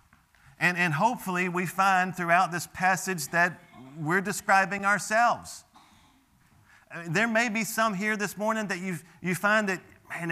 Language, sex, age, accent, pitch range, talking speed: English, male, 40-59, American, 145-180 Hz, 145 wpm